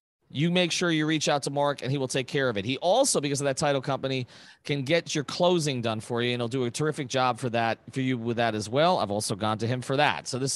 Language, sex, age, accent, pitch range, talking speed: English, male, 40-59, American, 125-165 Hz, 295 wpm